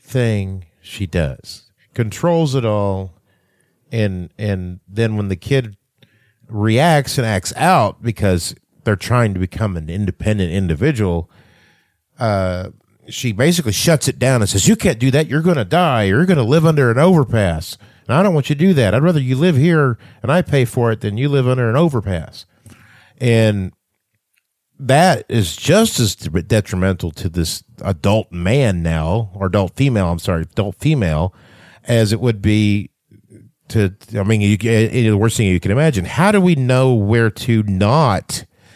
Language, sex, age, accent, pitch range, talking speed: English, male, 50-69, American, 100-135 Hz, 165 wpm